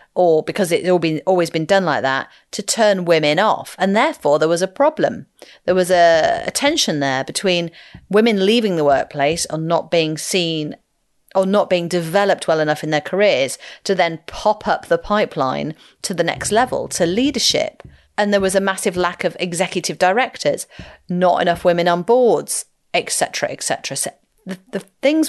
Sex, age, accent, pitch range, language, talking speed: female, 40-59, British, 165-215 Hz, English, 180 wpm